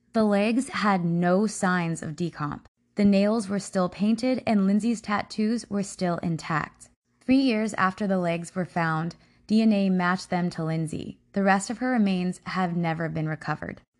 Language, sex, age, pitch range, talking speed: English, female, 20-39, 175-220 Hz, 165 wpm